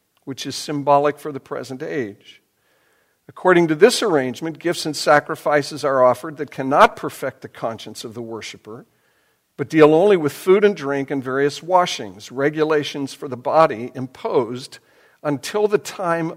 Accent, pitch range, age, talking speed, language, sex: American, 140-175 Hz, 60-79, 155 wpm, English, male